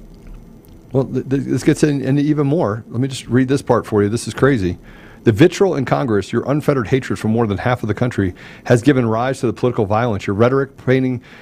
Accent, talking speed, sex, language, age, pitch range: American, 215 wpm, male, English, 40-59, 110-130 Hz